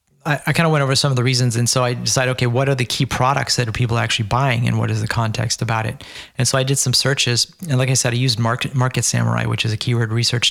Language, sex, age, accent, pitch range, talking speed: English, male, 30-49, American, 115-130 Hz, 290 wpm